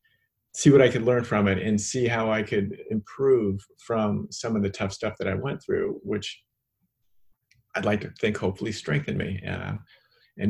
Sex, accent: male, American